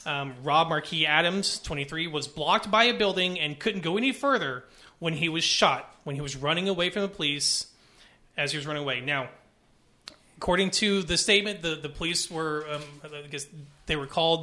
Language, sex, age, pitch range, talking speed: English, male, 30-49, 150-190 Hz, 195 wpm